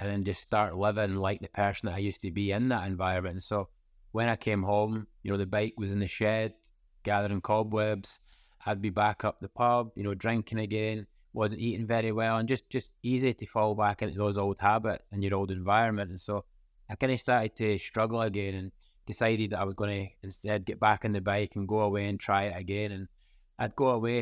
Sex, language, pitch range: male, English, 100-115 Hz